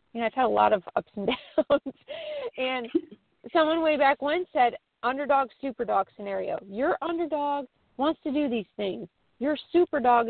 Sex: female